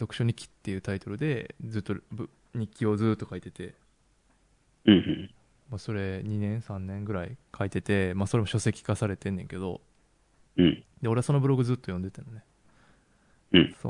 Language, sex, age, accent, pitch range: Japanese, male, 20-39, native, 100-120 Hz